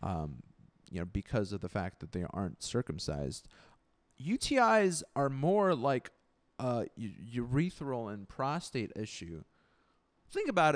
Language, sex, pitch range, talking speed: English, male, 130-195 Hz, 130 wpm